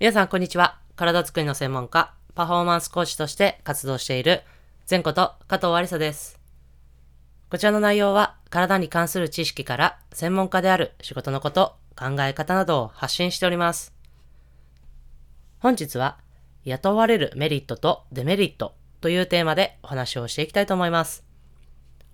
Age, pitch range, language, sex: 20-39, 125-180 Hz, Japanese, female